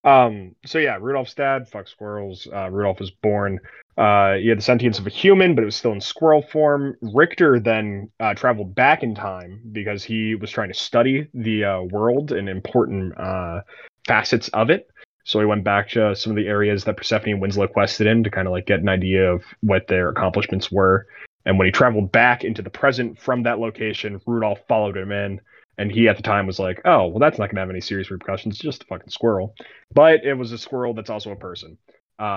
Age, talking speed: 20-39, 225 wpm